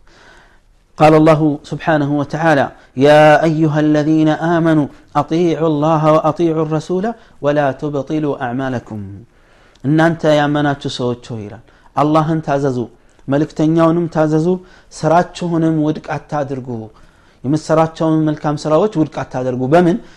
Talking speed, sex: 100 wpm, male